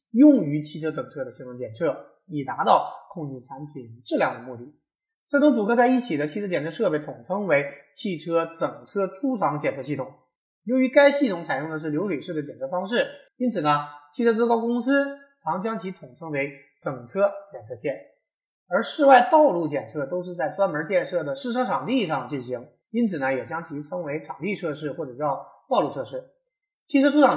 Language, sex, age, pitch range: Chinese, male, 20-39, 150-235 Hz